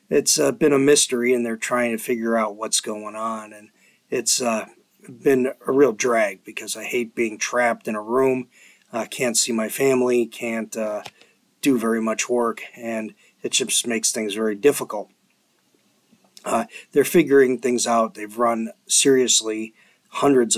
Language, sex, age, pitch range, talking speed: English, male, 40-59, 110-135 Hz, 165 wpm